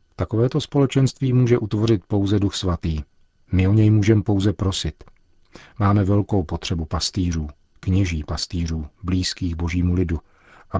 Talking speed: 130 wpm